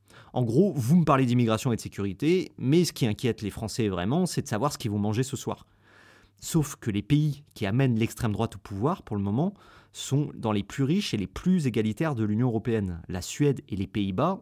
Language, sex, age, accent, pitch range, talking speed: French, male, 30-49, French, 105-145 Hz, 230 wpm